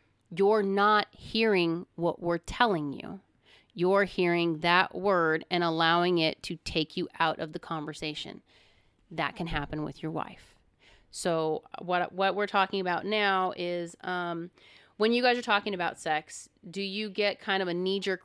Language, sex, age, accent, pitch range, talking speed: English, female, 30-49, American, 165-200 Hz, 165 wpm